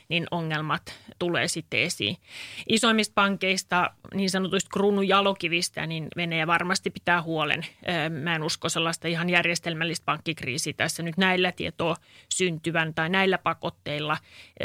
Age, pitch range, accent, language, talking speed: 30-49, 170-200 Hz, Finnish, English, 130 wpm